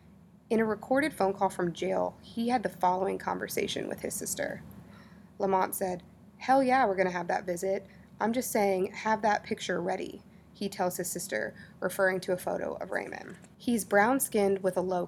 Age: 20-39